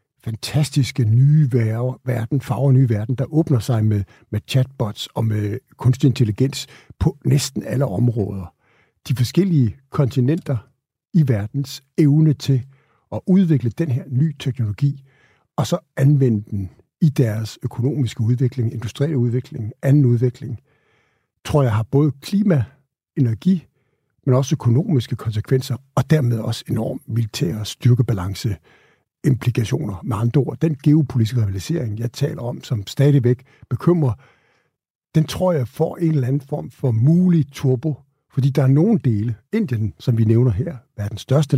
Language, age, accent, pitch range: Danish, 60-79, native, 120-145 Hz